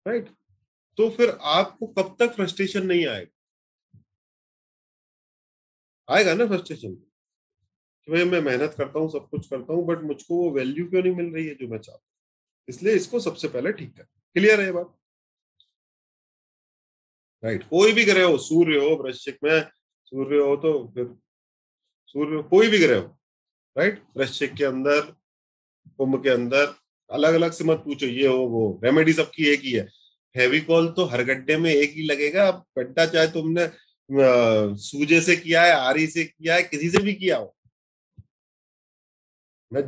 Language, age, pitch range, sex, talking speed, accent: Hindi, 30-49, 135-175 Hz, male, 165 wpm, native